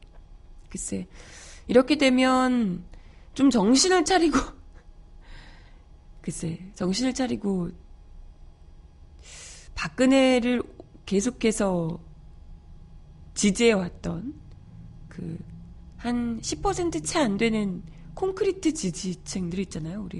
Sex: female